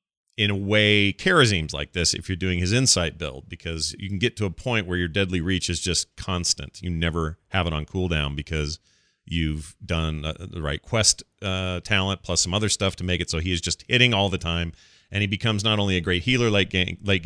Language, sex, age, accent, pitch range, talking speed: English, male, 40-59, American, 80-105 Hz, 225 wpm